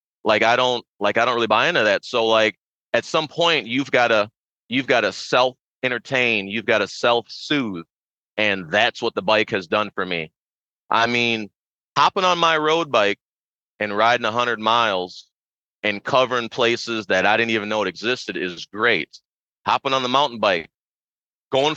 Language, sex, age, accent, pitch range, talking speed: English, male, 30-49, American, 115-150 Hz, 185 wpm